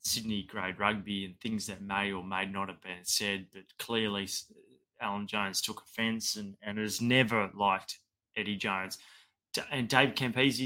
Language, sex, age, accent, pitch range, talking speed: English, male, 20-39, Australian, 100-120 Hz, 165 wpm